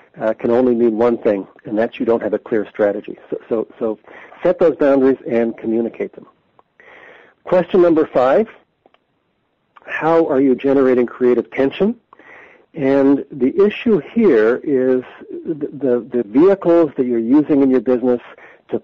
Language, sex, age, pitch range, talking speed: English, male, 50-69, 115-150 Hz, 150 wpm